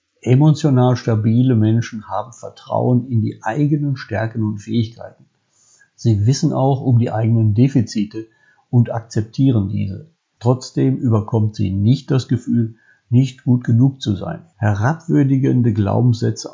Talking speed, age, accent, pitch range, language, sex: 125 wpm, 50-69, German, 110-130 Hz, German, male